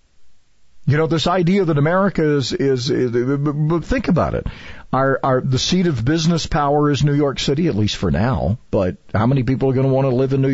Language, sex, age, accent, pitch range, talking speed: English, male, 50-69, American, 115-150 Hz, 235 wpm